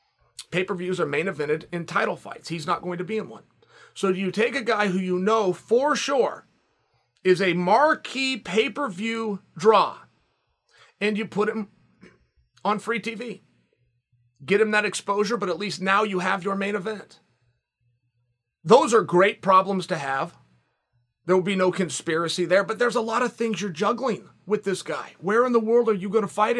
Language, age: English, 30-49